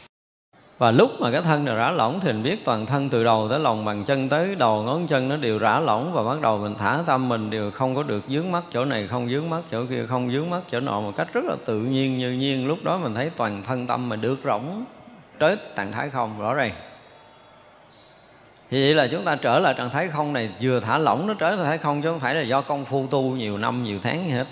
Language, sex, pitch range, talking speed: Vietnamese, male, 110-145 Hz, 265 wpm